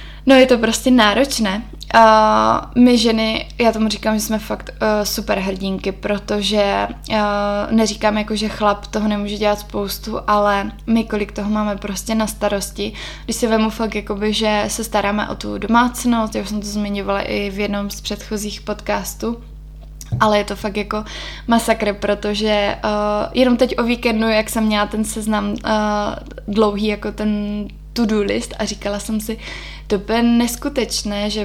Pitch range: 210-235 Hz